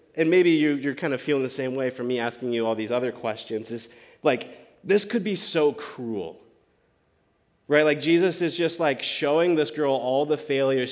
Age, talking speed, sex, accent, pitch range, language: 20-39, 200 wpm, male, American, 120-155 Hz, English